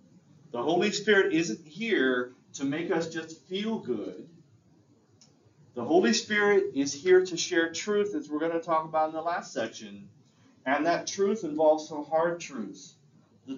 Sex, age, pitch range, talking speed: male, 40-59, 125-175 Hz, 165 wpm